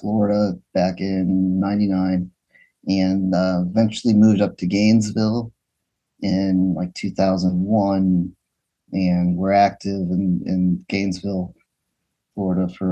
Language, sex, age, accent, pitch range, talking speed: English, male, 30-49, American, 90-100 Hz, 100 wpm